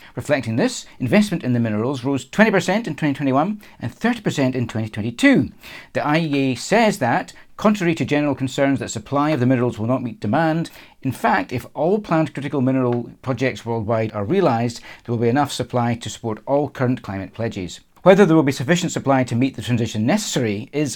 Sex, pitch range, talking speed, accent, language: male, 115-150 Hz, 185 wpm, British, English